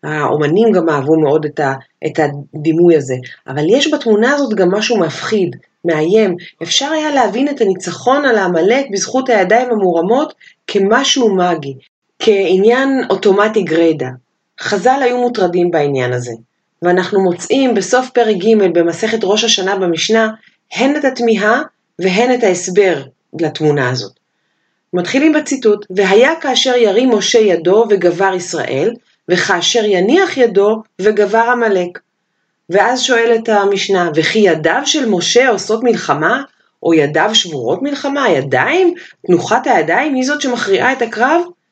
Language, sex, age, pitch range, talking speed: Hebrew, female, 30-49, 180-245 Hz, 125 wpm